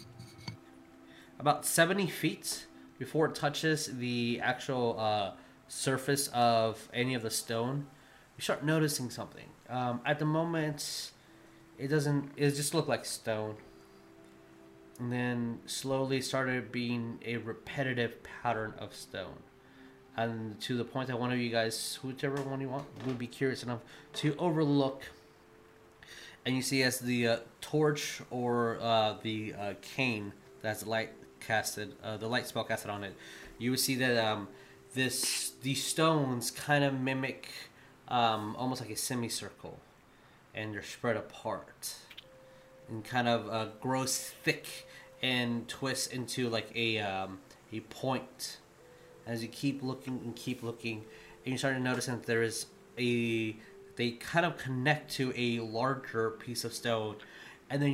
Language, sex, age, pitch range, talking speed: English, male, 20-39, 110-135 Hz, 150 wpm